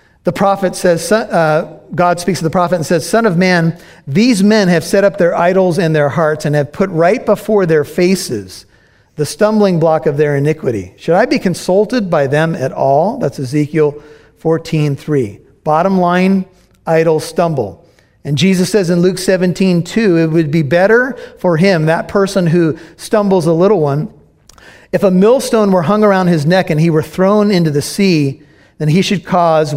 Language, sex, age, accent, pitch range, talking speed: English, male, 50-69, American, 165-200 Hz, 185 wpm